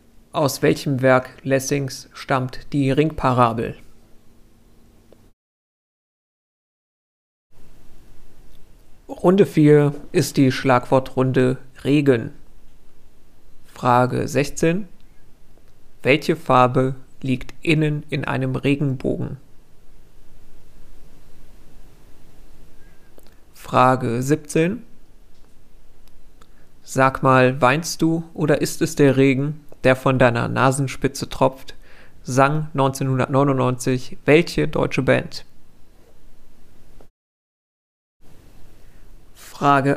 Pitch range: 125-150 Hz